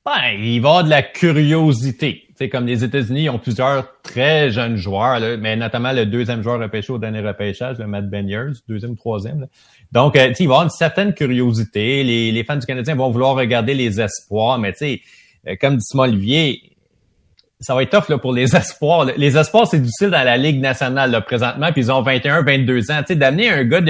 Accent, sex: Canadian, male